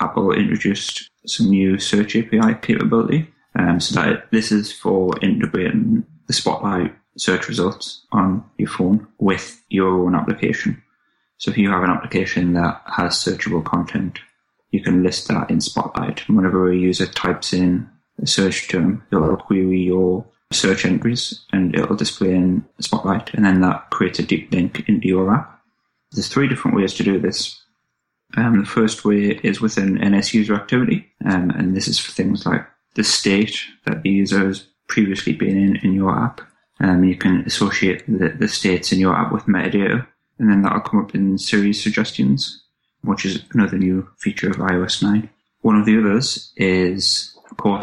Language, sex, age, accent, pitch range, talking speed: English, male, 10-29, British, 95-105 Hz, 175 wpm